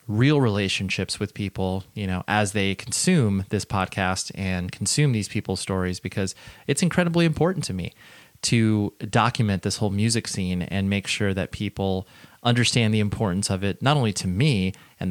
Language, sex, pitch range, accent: English, male, 100-135 Hz, American